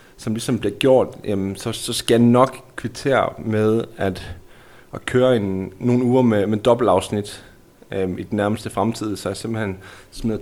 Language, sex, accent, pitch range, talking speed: Danish, male, native, 100-125 Hz, 165 wpm